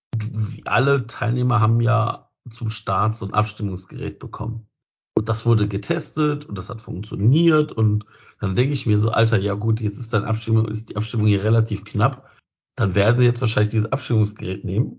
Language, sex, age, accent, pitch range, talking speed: German, male, 50-69, German, 105-120 Hz, 185 wpm